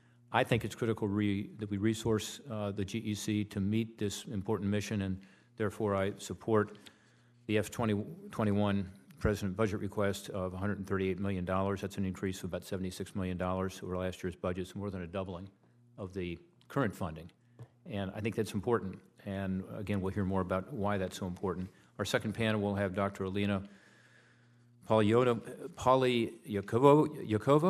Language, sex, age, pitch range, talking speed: English, male, 40-59, 95-110 Hz, 155 wpm